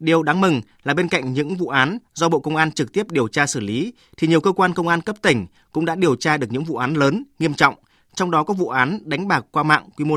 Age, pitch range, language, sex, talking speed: 20-39, 140-175 Hz, Vietnamese, male, 290 wpm